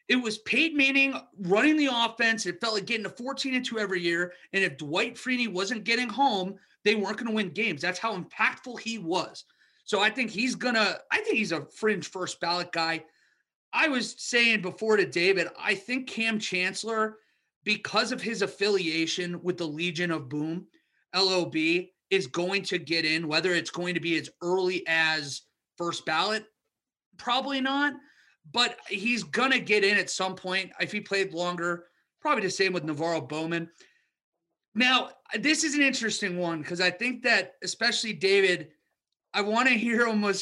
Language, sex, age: English, male, 30-49